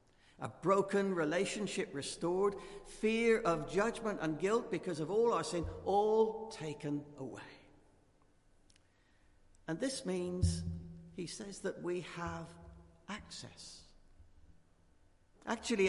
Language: English